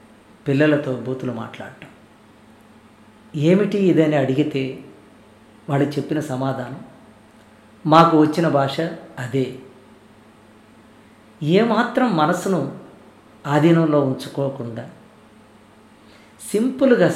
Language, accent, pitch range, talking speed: Telugu, native, 110-165 Hz, 65 wpm